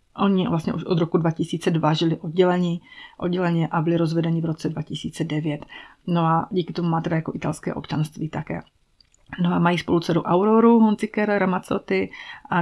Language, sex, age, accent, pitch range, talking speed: Czech, female, 30-49, native, 165-200 Hz, 155 wpm